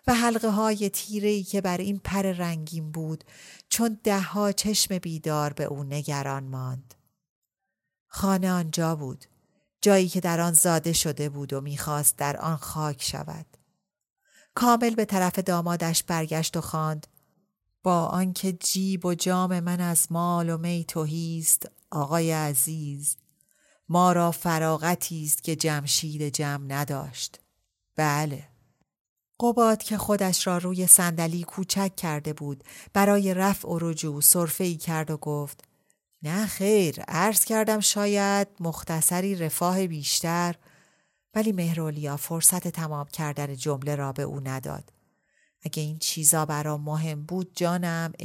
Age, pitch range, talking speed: 40-59, 150-185 Hz, 135 wpm